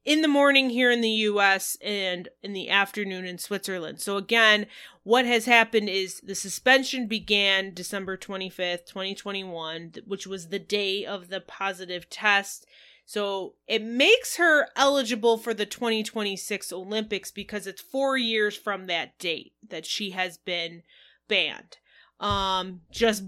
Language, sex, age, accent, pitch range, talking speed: English, female, 20-39, American, 190-230 Hz, 145 wpm